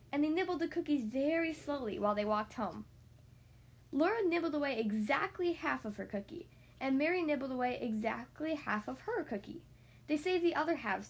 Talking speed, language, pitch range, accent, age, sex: 180 wpm, English, 200-315 Hz, American, 10-29, female